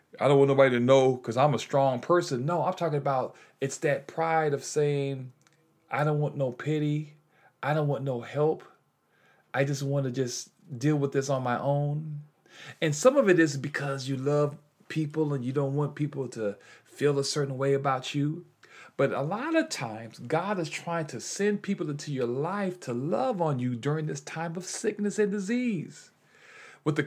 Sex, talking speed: male, 195 wpm